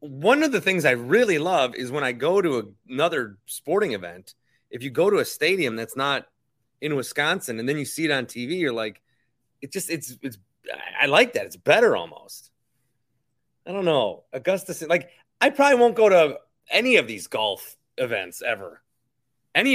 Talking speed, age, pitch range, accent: 185 wpm, 30-49, 120-170 Hz, American